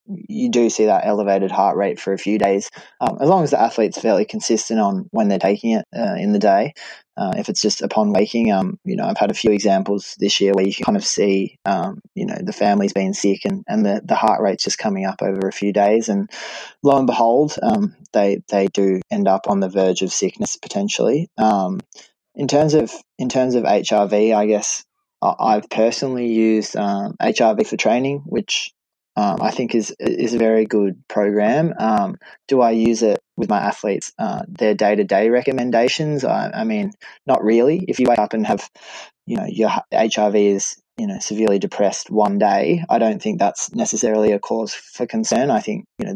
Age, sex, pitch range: 20-39, male, 100-150 Hz